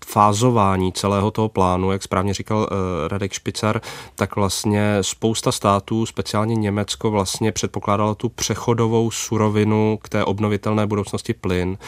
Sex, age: male, 30-49